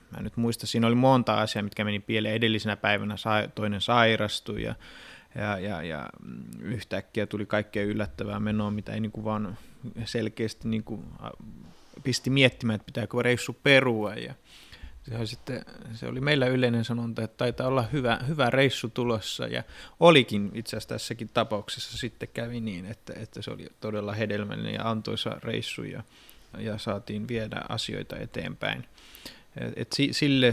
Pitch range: 105-120 Hz